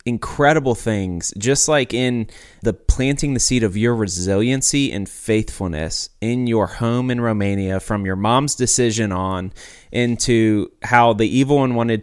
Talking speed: 150 wpm